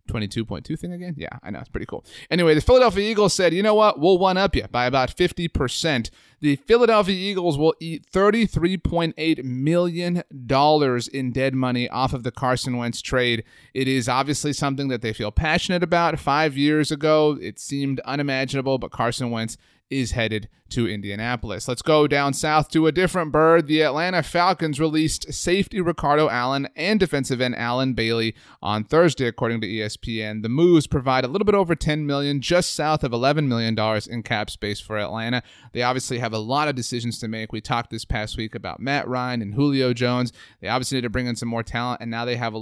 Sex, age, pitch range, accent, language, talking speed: male, 30-49, 115-170 Hz, American, English, 195 wpm